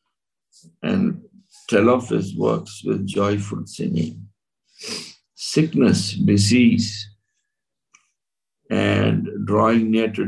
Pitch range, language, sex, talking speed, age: 100-135 Hz, English, male, 80 wpm, 60-79